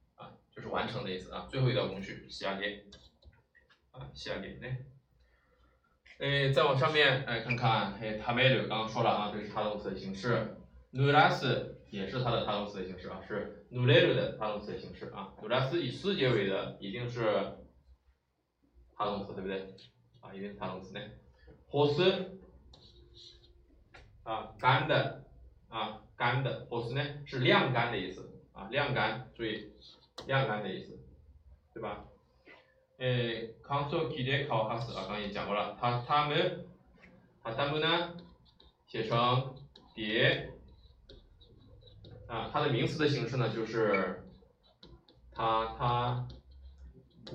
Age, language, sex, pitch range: 20-39, Chinese, male, 95-135 Hz